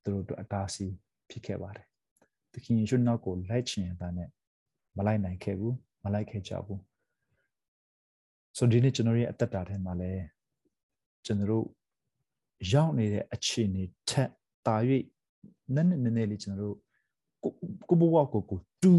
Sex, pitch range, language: male, 100-125 Hz, English